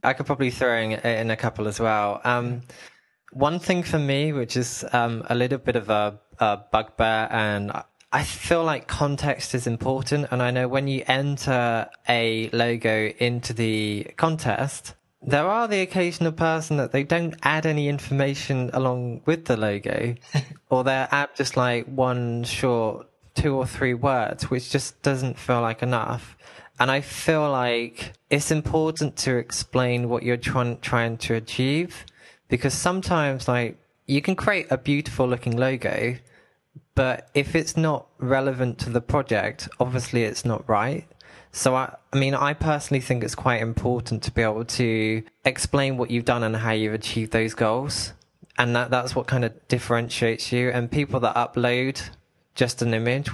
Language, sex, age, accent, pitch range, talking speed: English, male, 20-39, British, 115-140 Hz, 170 wpm